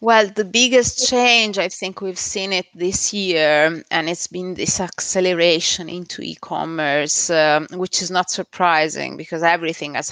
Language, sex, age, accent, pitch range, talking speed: English, female, 30-49, Italian, 155-180 Hz, 150 wpm